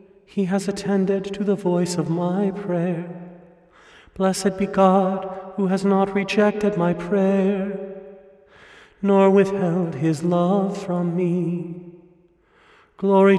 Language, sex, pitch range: English, male, 170-200 Hz